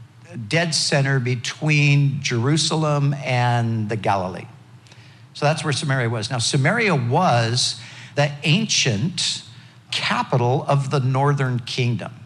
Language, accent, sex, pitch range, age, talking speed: English, American, male, 120-150 Hz, 60-79, 110 wpm